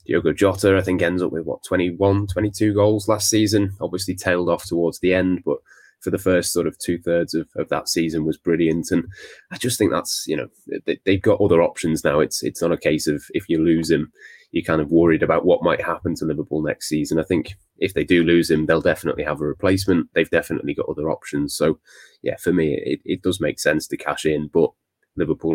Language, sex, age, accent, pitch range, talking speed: English, male, 20-39, British, 80-95 Hz, 225 wpm